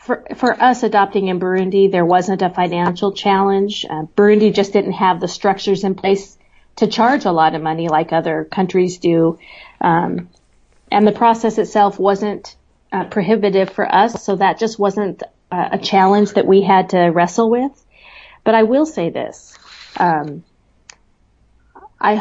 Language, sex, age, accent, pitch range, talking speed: English, female, 40-59, American, 175-210 Hz, 160 wpm